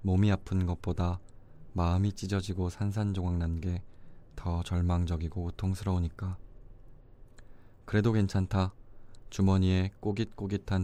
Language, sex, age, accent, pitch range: Korean, male, 20-39, native, 85-105 Hz